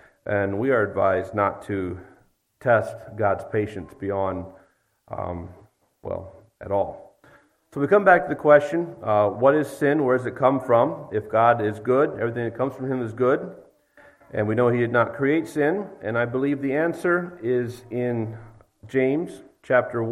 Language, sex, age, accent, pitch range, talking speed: English, male, 50-69, American, 110-145 Hz, 175 wpm